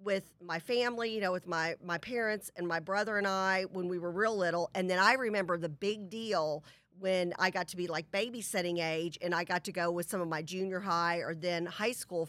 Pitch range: 165-195 Hz